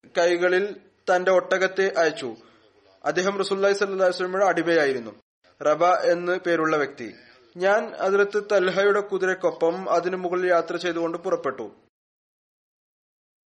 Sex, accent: male, native